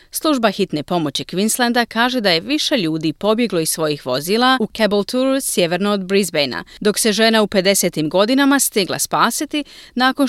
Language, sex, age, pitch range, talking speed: Croatian, female, 30-49, 175-250 Hz, 165 wpm